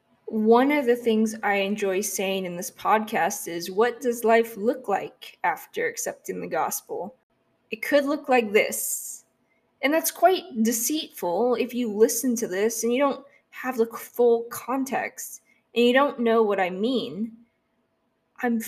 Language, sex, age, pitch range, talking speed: English, female, 10-29, 200-245 Hz, 155 wpm